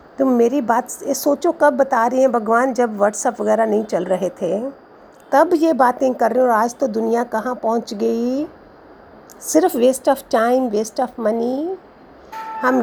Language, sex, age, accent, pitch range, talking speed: Hindi, female, 50-69, native, 220-275 Hz, 180 wpm